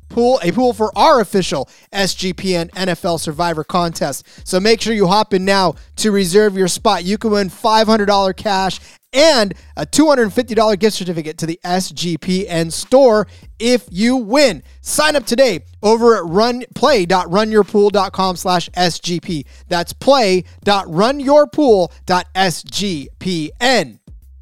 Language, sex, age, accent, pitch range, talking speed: English, male, 30-49, American, 185-245 Hz, 115 wpm